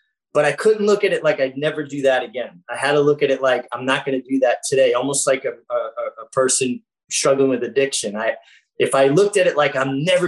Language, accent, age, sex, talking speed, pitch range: English, American, 30-49, male, 255 wpm, 125-145 Hz